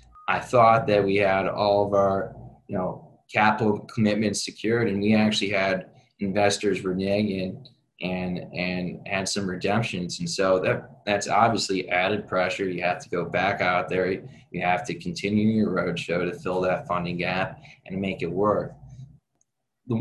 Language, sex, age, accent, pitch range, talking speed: English, male, 20-39, American, 95-115 Hz, 160 wpm